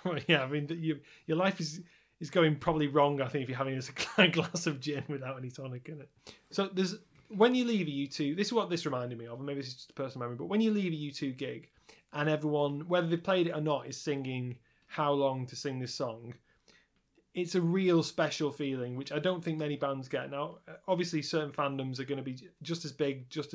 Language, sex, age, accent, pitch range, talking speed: English, male, 30-49, British, 135-165 Hz, 240 wpm